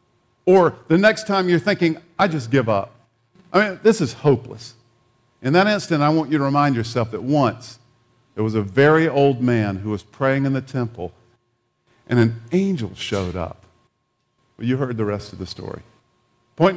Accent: American